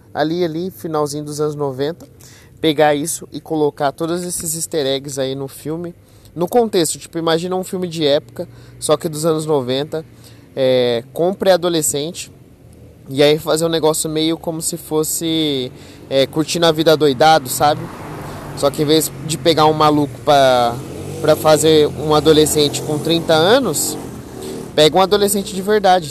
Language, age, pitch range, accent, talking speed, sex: Portuguese, 20-39, 135-170 Hz, Brazilian, 155 wpm, male